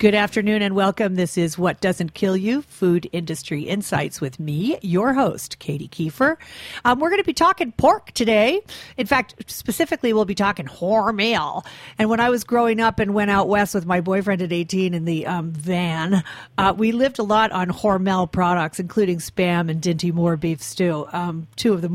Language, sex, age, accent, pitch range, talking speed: English, female, 40-59, American, 175-225 Hz, 195 wpm